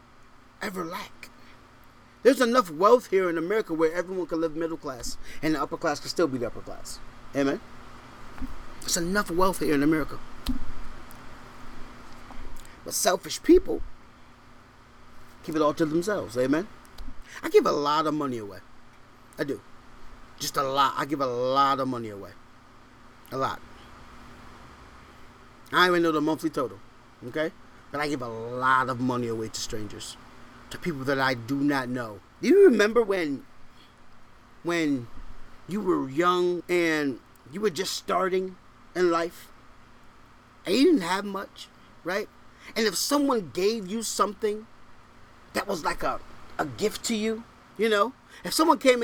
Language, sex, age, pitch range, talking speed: English, male, 30-49, 125-205 Hz, 155 wpm